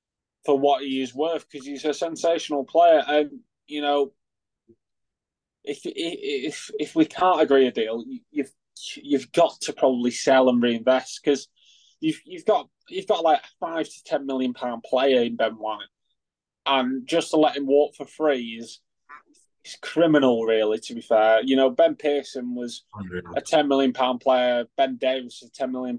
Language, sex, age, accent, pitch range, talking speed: English, male, 20-39, British, 125-150 Hz, 175 wpm